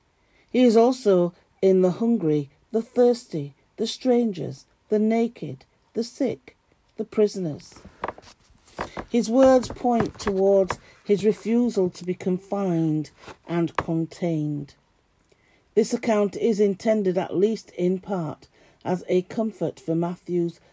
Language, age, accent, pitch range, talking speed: English, 50-69, British, 165-220 Hz, 115 wpm